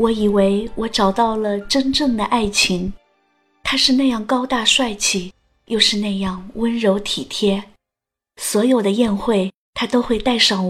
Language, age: Chinese, 20-39